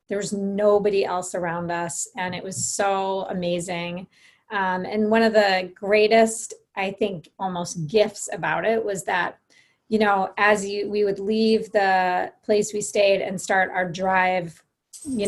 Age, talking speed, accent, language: 30-49, 160 wpm, American, English